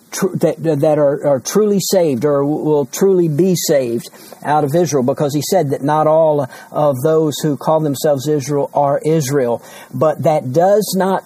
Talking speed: 175 wpm